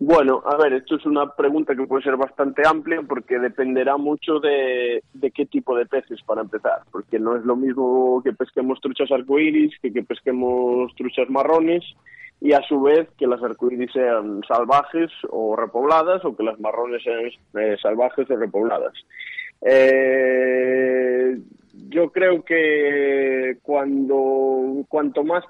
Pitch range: 125-150 Hz